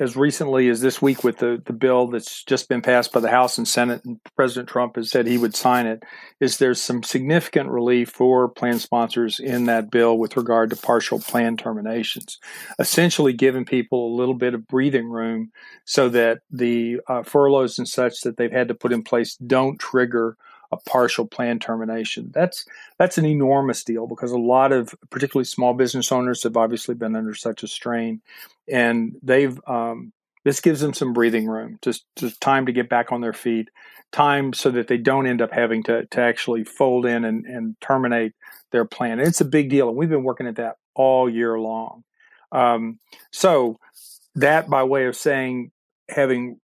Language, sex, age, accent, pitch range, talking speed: English, male, 50-69, American, 115-130 Hz, 195 wpm